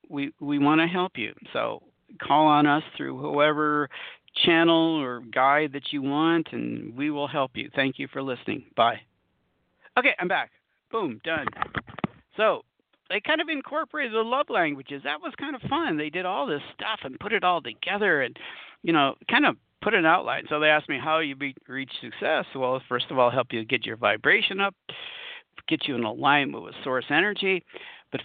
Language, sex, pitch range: English, male, 135-190 Hz